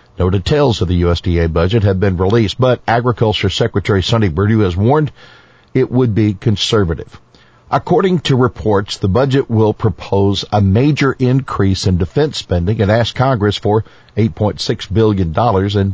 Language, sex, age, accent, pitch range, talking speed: English, male, 50-69, American, 95-120 Hz, 150 wpm